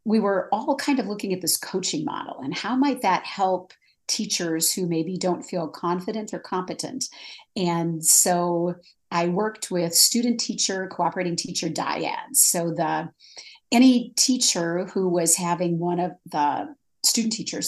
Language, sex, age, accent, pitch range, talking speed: English, female, 50-69, American, 165-215 Hz, 150 wpm